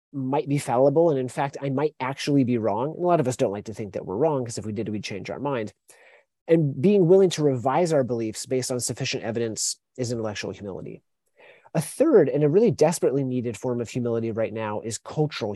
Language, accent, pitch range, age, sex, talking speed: English, American, 115-155 Hz, 30-49, male, 225 wpm